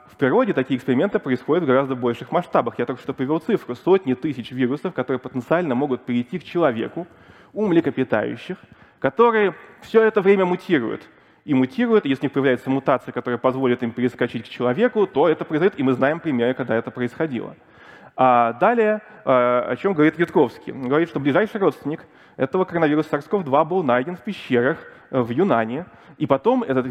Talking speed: 175 wpm